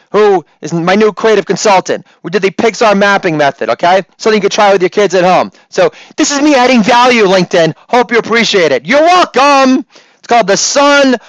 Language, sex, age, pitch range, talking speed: English, male, 30-49, 200-265 Hz, 205 wpm